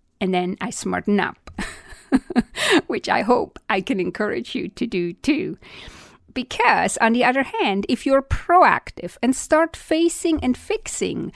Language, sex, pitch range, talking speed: English, female, 195-290 Hz, 150 wpm